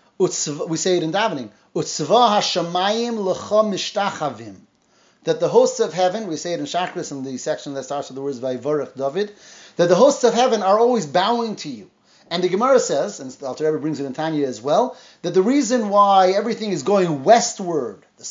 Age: 30-49